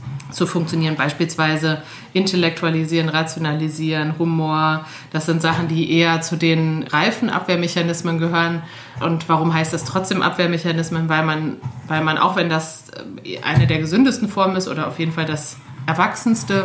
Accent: German